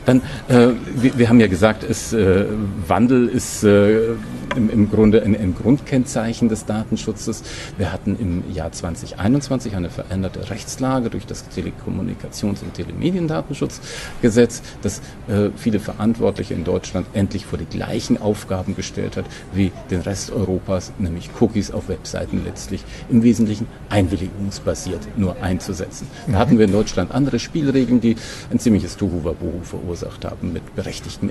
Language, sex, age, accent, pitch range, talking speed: German, male, 50-69, German, 95-115 Hz, 140 wpm